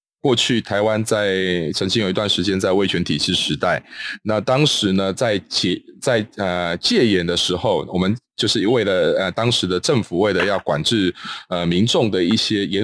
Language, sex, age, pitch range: Chinese, male, 20-39, 95-125 Hz